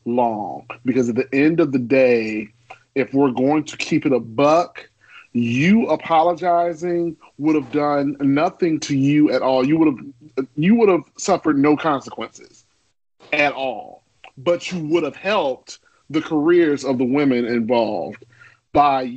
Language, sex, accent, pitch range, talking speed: English, male, American, 135-195 Hz, 155 wpm